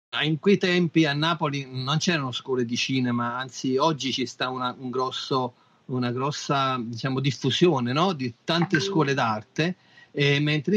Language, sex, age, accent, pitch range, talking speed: Italian, male, 40-59, native, 125-165 Hz, 155 wpm